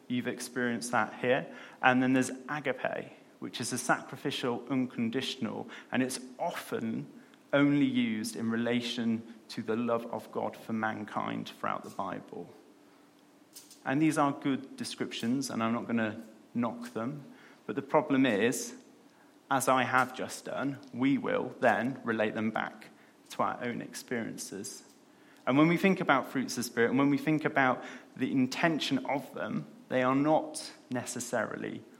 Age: 30-49